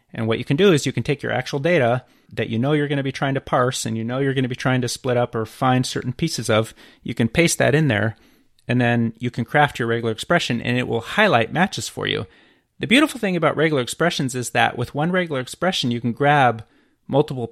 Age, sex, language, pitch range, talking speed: 30-49, male, English, 115-145 Hz, 255 wpm